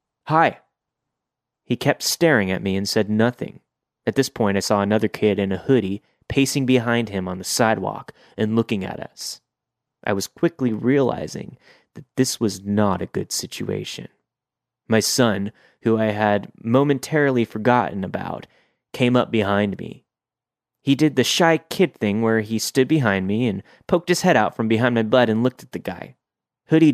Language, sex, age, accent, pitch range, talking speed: English, male, 30-49, American, 105-135 Hz, 175 wpm